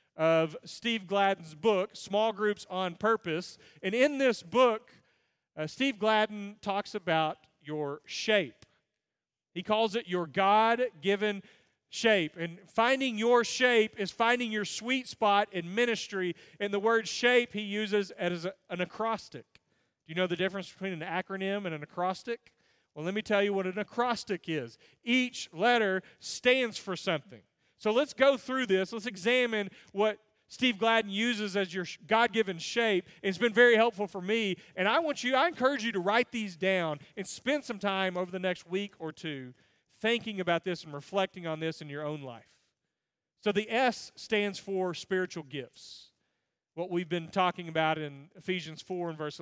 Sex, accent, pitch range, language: male, American, 175-225 Hz, English